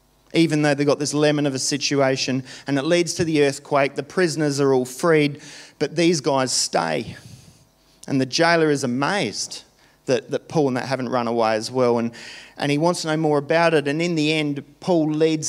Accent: Australian